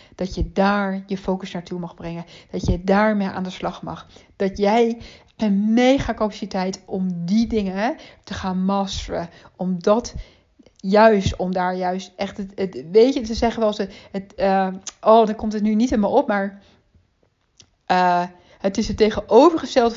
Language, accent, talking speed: Dutch, Dutch, 180 wpm